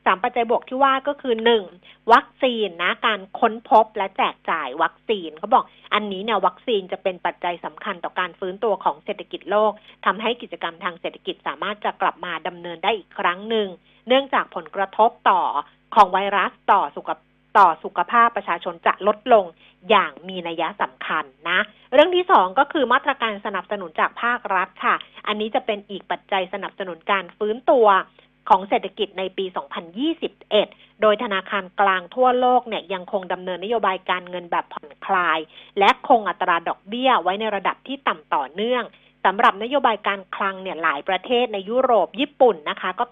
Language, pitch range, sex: Thai, 185-240 Hz, female